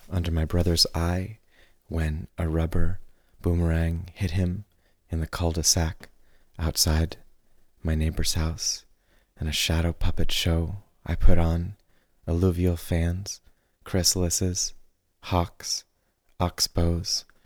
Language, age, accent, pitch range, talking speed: English, 30-49, American, 80-90 Hz, 105 wpm